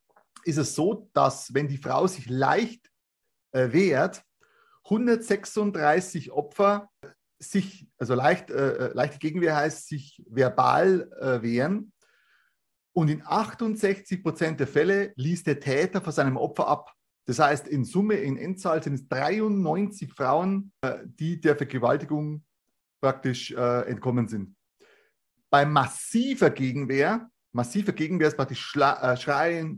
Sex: male